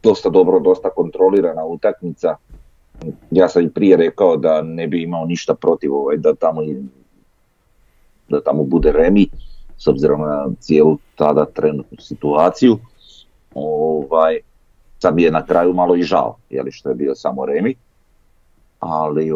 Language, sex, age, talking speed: Croatian, male, 40-59, 145 wpm